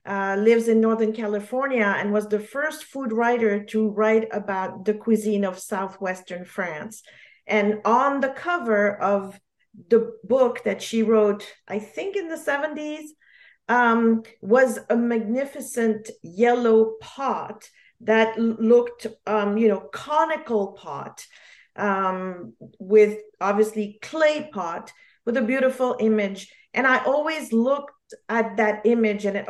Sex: female